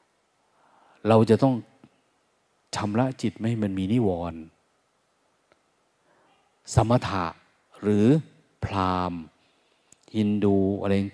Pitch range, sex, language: 100-130 Hz, male, Thai